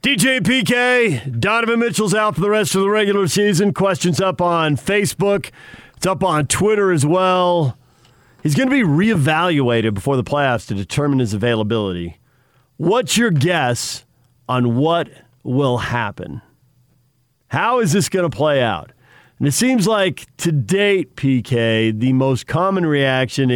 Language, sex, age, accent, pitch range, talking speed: English, male, 40-59, American, 120-175 Hz, 150 wpm